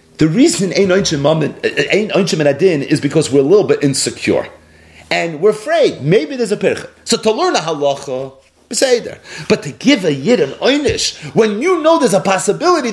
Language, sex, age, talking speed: English, male, 40-59, 180 wpm